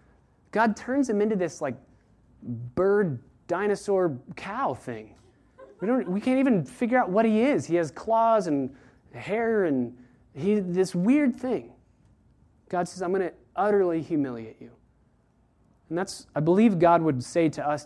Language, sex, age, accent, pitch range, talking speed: English, male, 20-39, American, 135-195 Hz, 145 wpm